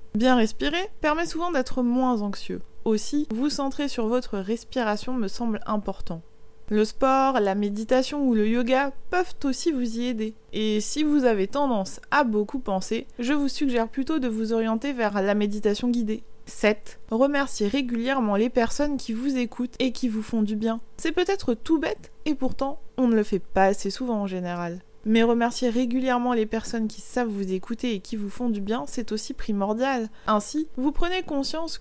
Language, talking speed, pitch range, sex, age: French, 185 wpm, 210-270 Hz, female, 20-39